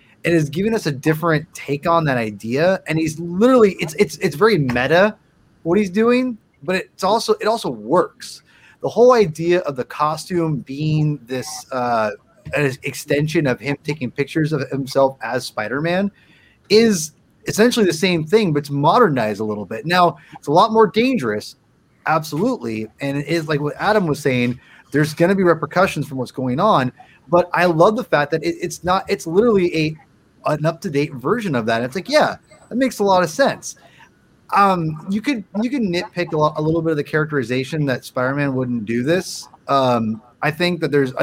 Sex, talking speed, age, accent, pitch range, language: male, 190 wpm, 30-49, American, 140-185 Hz, English